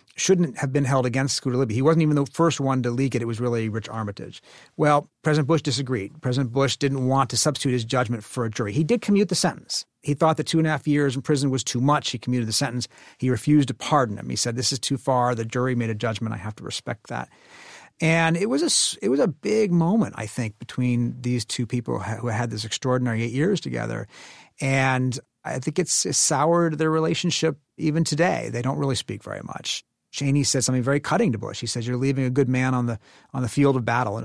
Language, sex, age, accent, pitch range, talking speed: English, male, 40-59, American, 120-145 Hz, 240 wpm